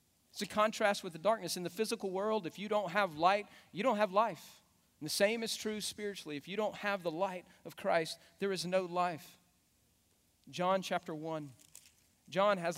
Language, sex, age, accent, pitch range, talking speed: English, male, 40-59, American, 130-180 Hz, 195 wpm